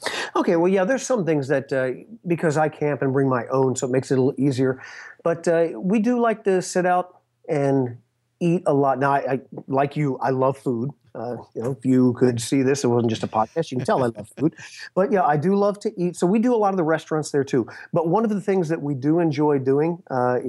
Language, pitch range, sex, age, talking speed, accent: English, 130-170 Hz, male, 40-59, 260 wpm, American